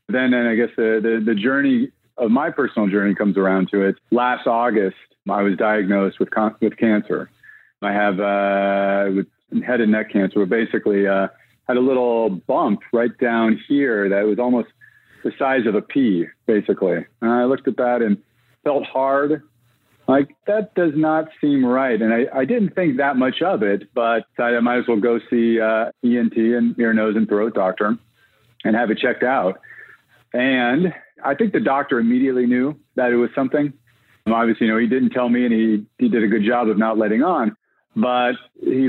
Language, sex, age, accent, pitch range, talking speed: English, male, 40-59, American, 105-125 Hz, 195 wpm